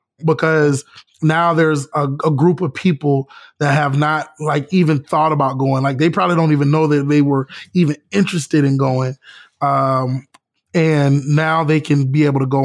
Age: 20-39